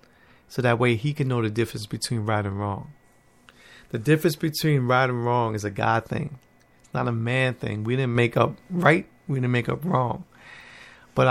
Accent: American